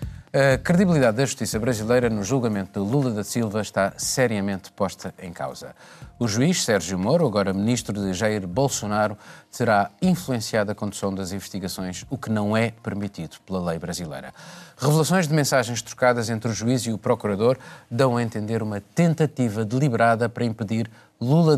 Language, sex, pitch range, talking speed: Portuguese, male, 100-125 Hz, 160 wpm